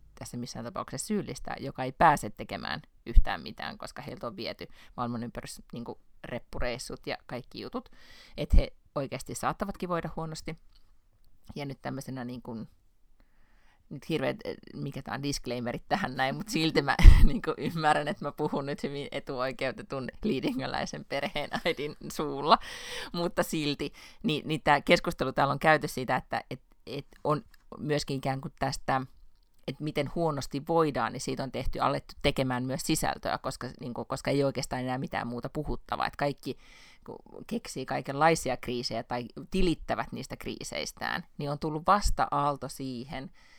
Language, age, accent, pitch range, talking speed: Finnish, 30-49, native, 125-155 Hz, 145 wpm